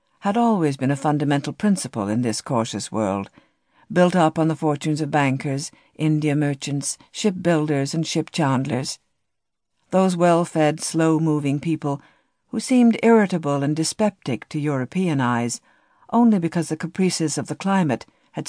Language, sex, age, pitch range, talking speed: English, female, 60-79, 135-185 Hz, 145 wpm